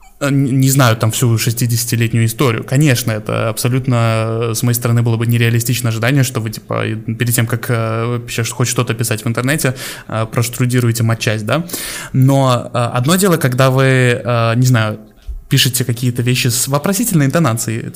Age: 20-39